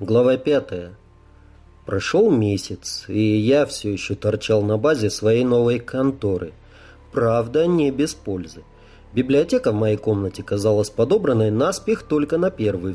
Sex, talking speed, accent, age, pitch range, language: male, 130 wpm, native, 30-49, 105-150 Hz, Russian